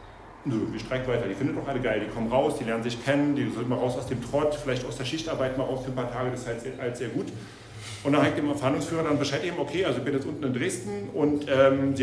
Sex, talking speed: male, 290 wpm